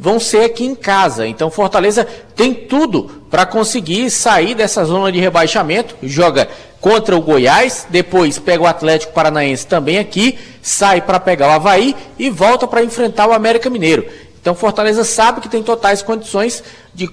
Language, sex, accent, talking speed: Portuguese, male, Brazilian, 165 wpm